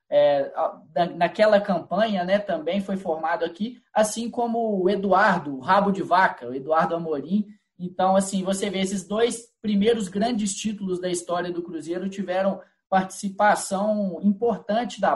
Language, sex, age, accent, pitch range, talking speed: Portuguese, male, 20-39, Brazilian, 175-205 Hz, 140 wpm